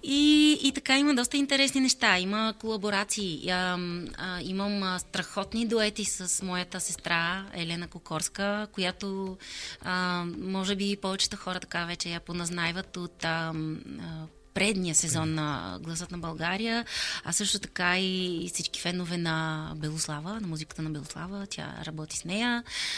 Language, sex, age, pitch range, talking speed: Bulgarian, female, 20-39, 165-195 Hz, 140 wpm